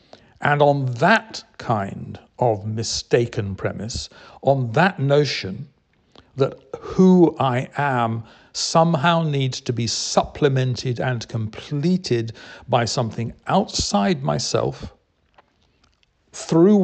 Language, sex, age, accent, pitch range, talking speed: English, male, 50-69, British, 120-145 Hz, 95 wpm